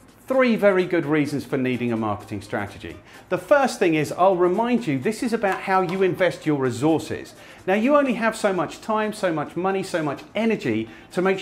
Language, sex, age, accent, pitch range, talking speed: English, male, 40-59, British, 130-200 Hz, 205 wpm